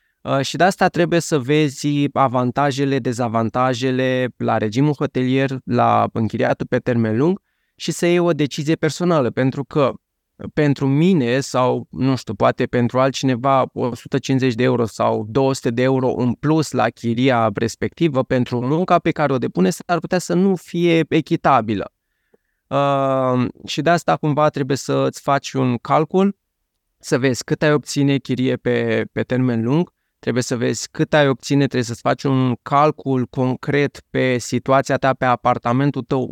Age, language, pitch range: 20-39, Romanian, 125-150 Hz